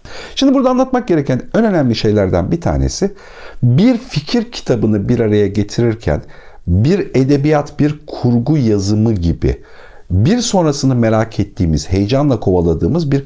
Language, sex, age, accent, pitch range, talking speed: Turkish, male, 60-79, native, 95-140 Hz, 125 wpm